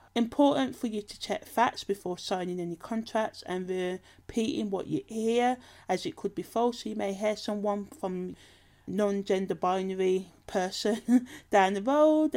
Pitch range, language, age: 185-225 Hz, English, 30-49